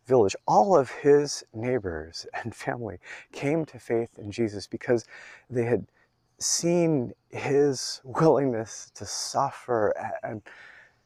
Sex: male